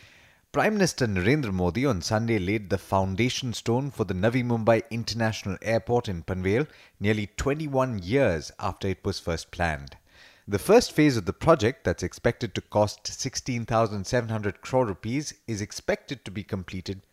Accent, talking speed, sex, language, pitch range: Indian, 155 wpm, male, English, 100-125 Hz